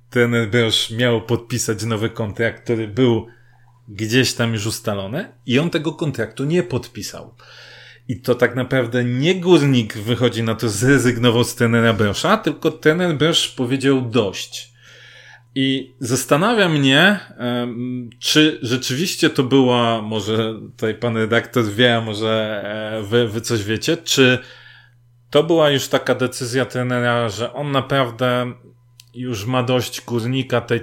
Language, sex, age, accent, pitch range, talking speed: Polish, male, 30-49, native, 115-130 Hz, 130 wpm